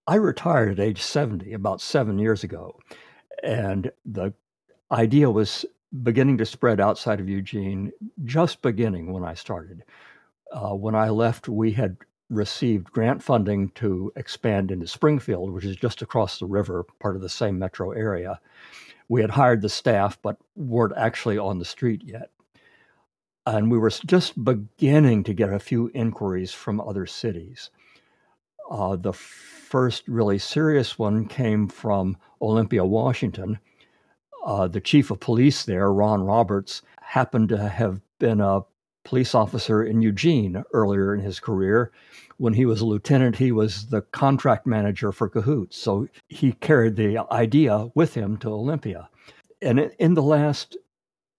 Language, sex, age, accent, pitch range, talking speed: English, male, 60-79, American, 100-130 Hz, 150 wpm